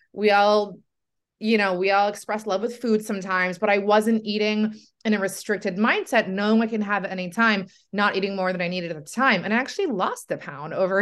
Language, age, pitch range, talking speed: English, 20-39, 185-230 Hz, 225 wpm